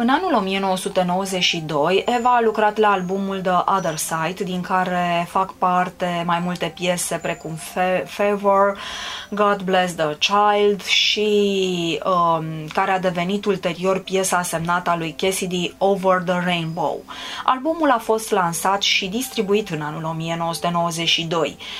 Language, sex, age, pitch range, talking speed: Romanian, female, 20-39, 170-205 Hz, 130 wpm